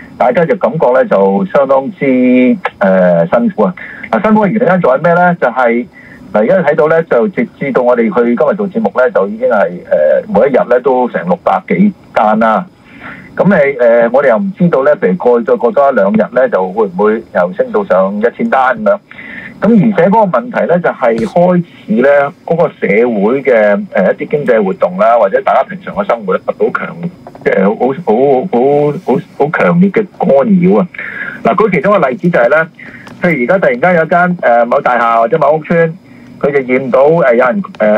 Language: Chinese